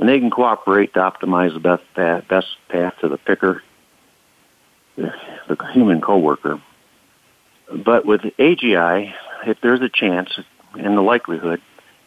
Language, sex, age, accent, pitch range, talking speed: English, male, 50-69, American, 85-110 Hz, 135 wpm